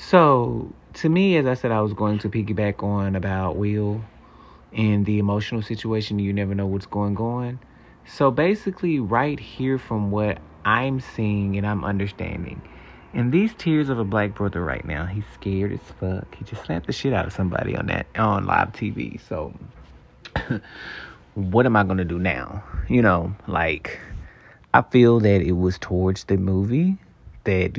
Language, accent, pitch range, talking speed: English, American, 95-120 Hz, 175 wpm